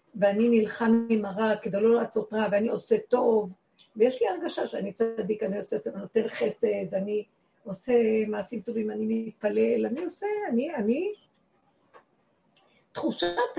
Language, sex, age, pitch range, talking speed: Hebrew, female, 50-69, 210-270 Hz, 140 wpm